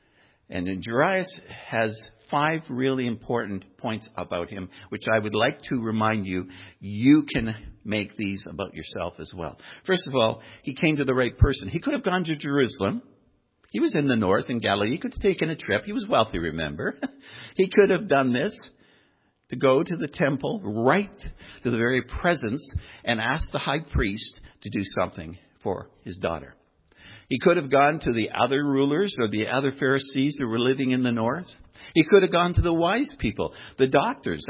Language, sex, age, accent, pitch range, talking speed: English, male, 60-79, American, 105-145 Hz, 195 wpm